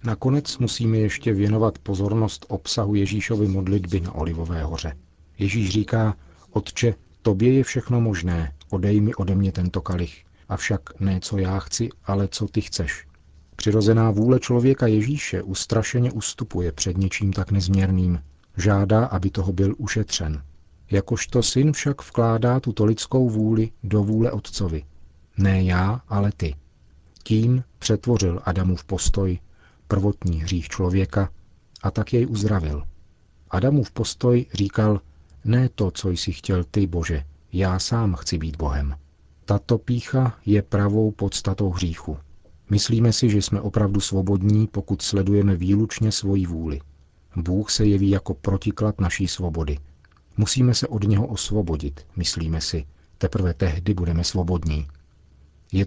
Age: 40-59